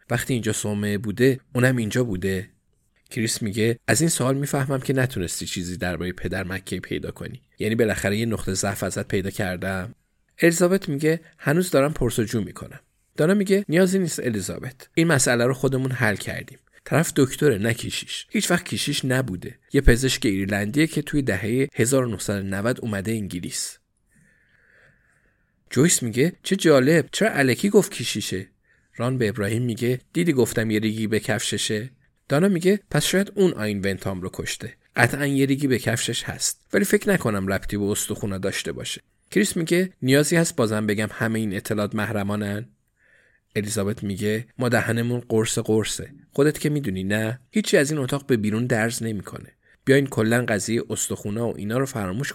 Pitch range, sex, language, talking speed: 105-140 Hz, male, Persian, 155 wpm